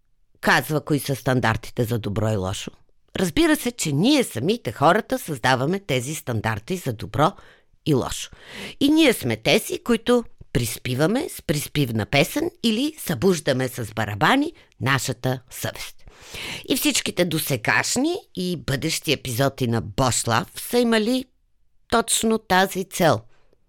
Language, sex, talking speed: Bulgarian, female, 125 wpm